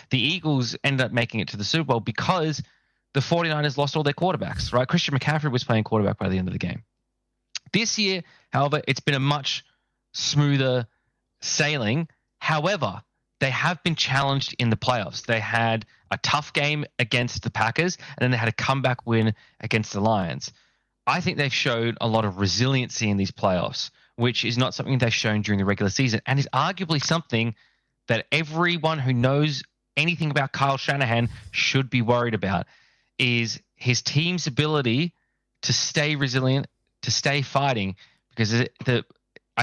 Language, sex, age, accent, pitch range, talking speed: English, male, 20-39, Australian, 115-150 Hz, 175 wpm